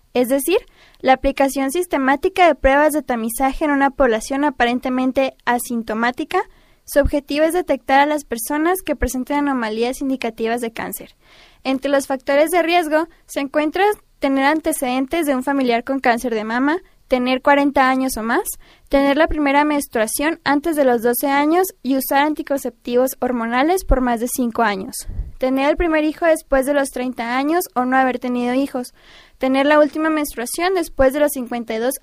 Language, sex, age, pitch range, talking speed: Spanish, female, 10-29, 250-300 Hz, 165 wpm